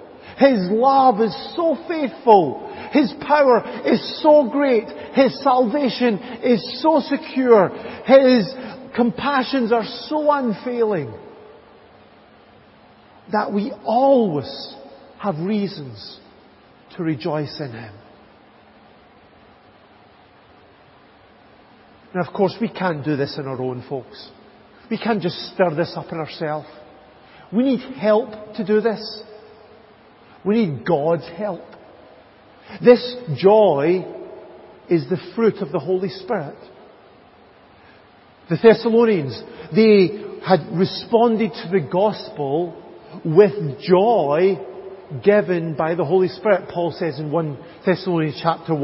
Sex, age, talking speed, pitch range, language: male, 50-69, 110 wpm, 165-240 Hz, English